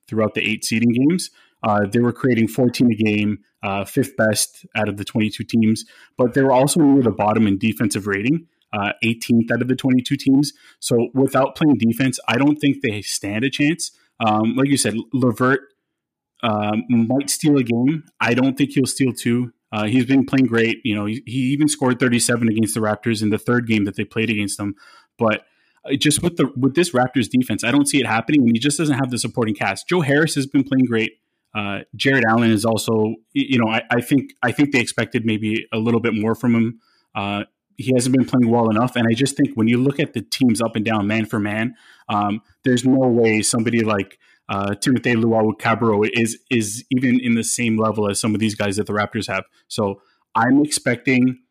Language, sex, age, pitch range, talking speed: English, male, 20-39, 110-130 Hz, 220 wpm